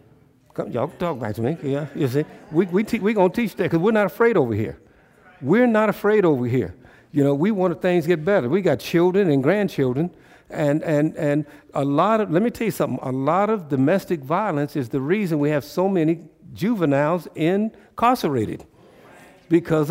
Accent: American